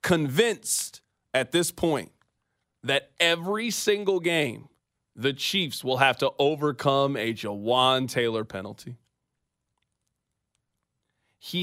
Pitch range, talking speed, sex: 130-185 Hz, 100 wpm, male